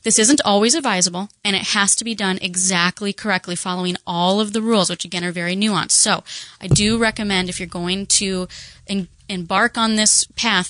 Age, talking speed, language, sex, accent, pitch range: 20-39, 190 wpm, English, female, American, 185-230 Hz